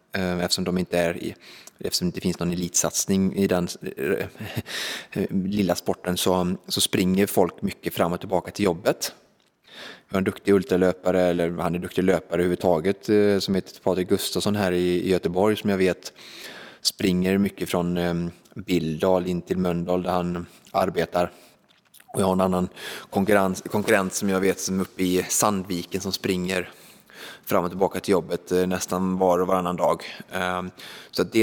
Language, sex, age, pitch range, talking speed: Swedish, male, 20-39, 90-100 Hz, 160 wpm